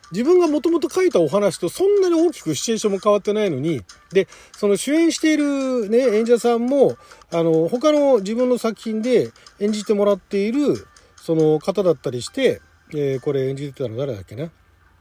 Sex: male